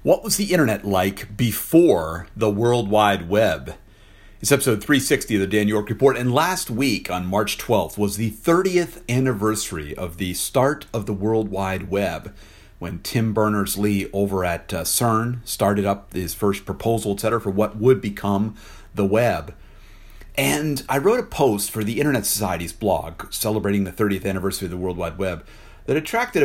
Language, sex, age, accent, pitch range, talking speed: English, male, 50-69, American, 100-125 Hz, 175 wpm